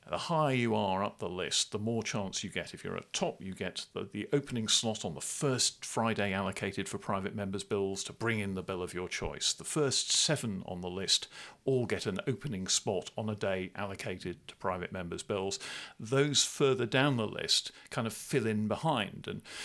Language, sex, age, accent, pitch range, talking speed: English, male, 50-69, British, 100-120 Hz, 210 wpm